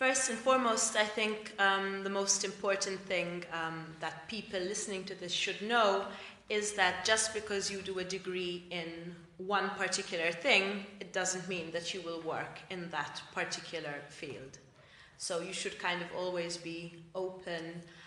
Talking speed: 165 wpm